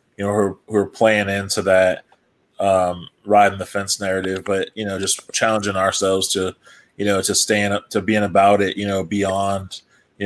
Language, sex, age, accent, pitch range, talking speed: English, male, 20-39, American, 95-105 Hz, 200 wpm